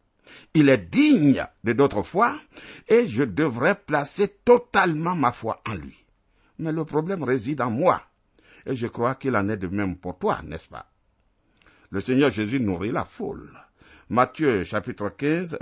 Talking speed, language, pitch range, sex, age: 165 wpm, French, 100-150 Hz, male, 60-79